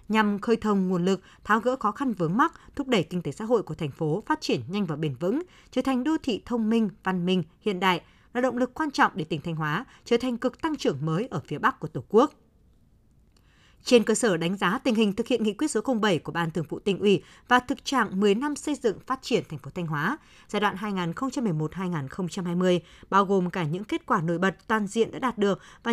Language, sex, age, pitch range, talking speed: Vietnamese, female, 20-39, 180-245 Hz, 245 wpm